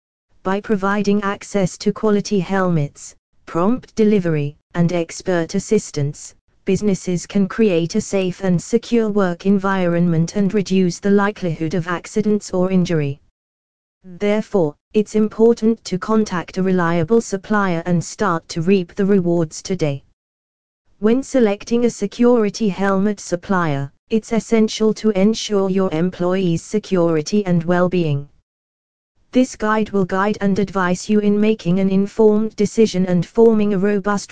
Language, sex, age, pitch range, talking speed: English, female, 20-39, 175-215 Hz, 130 wpm